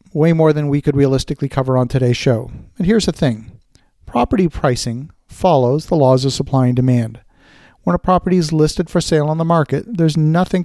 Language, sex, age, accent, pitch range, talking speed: English, male, 50-69, American, 135-165 Hz, 195 wpm